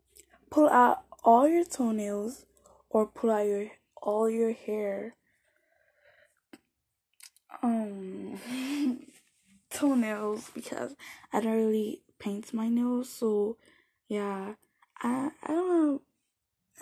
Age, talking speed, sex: 10-29, 95 wpm, female